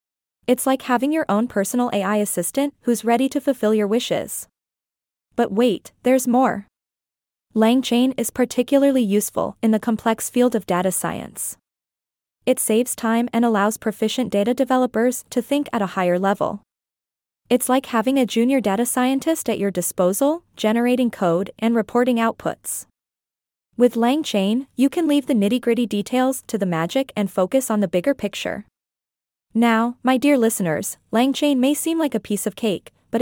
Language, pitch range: English, 205-255 Hz